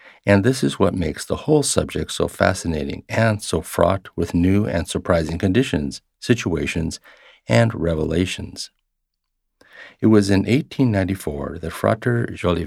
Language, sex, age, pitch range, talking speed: English, male, 50-69, 85-105 Hz, 125 wpm